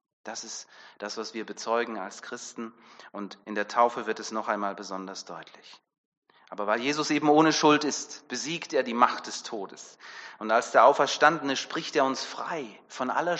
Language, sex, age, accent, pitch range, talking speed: German, male, 30-49, German, 110-135 Hz, 185 wpm